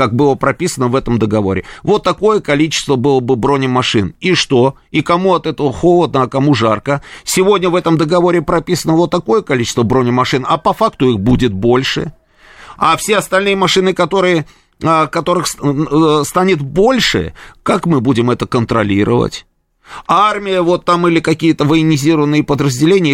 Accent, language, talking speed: native, Russian, 150 wpm